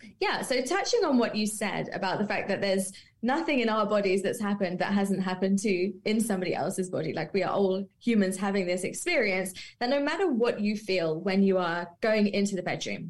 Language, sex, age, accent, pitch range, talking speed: English, female, 20-39, British, 185-240 Hz, 215 wpm